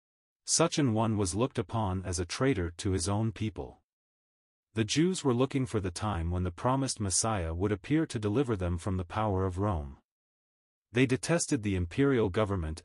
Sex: male